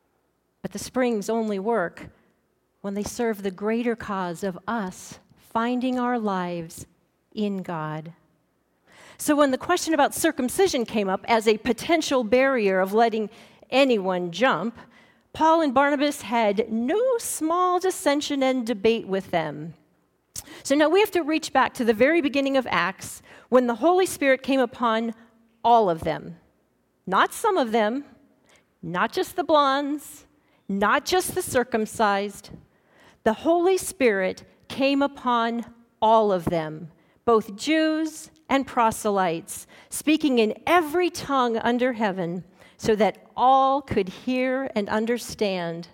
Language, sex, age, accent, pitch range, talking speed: English, female, 40-59, American, 205-280 Hz, 135 wpm